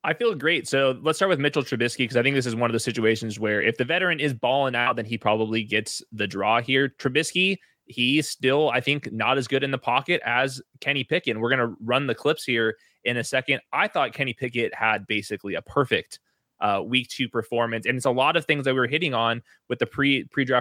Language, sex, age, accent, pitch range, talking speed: English, male, 20-39, American, 120-160 Hz, 245 wpm